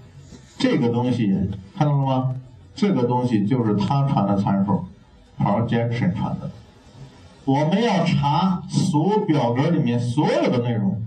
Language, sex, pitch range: Chinese, male, 110-150 Hz